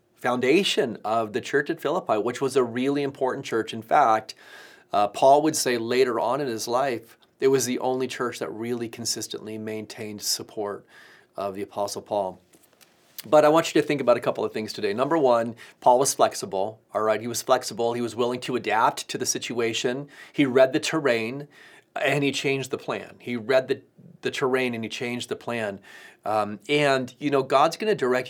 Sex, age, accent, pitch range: male, 30-49, American, 110-140 Hz